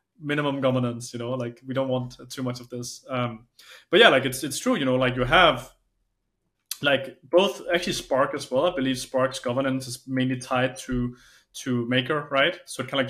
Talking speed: 210 wpm